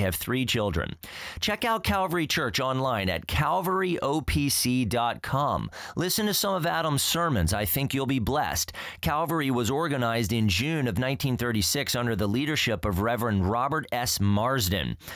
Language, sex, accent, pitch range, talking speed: English, male, American, 110-150 Hz, 145 wpm